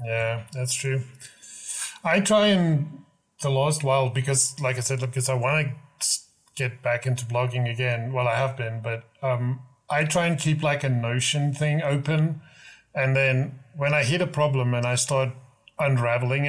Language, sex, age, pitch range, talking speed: English, male, 30-49, 125-145 Hz, 175 wpm